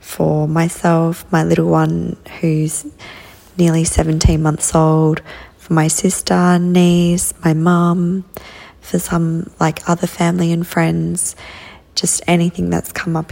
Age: 20-39